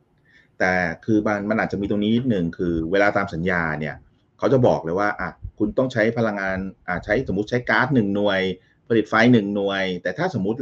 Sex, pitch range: male, 85-125 Hz